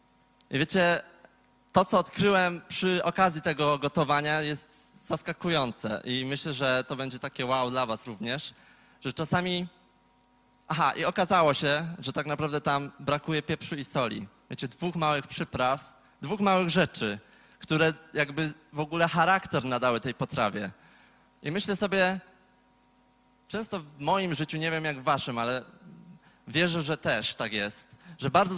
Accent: native